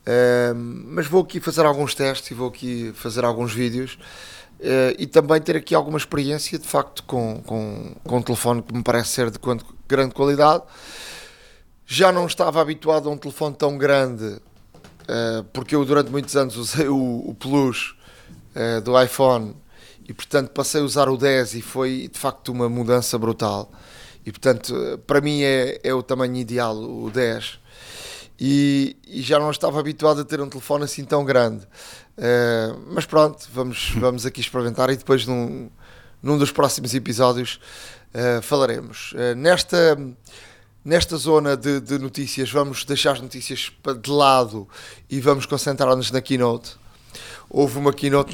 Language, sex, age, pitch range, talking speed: Portuguese, male, 20-39, 120-145 Hz, 165 wpm